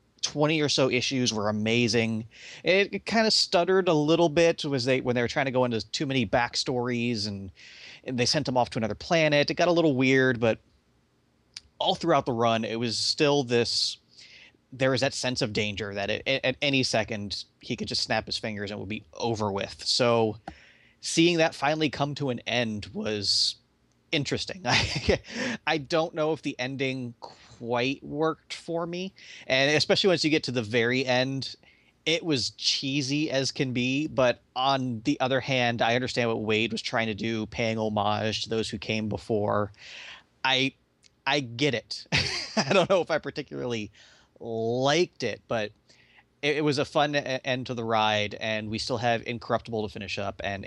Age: 30-49